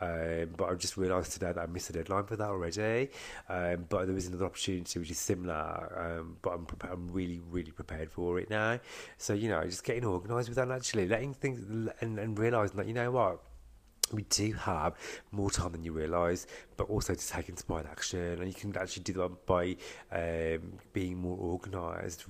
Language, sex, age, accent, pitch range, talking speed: English, male, 30-49, British, 90-105 Hz, 205 wpm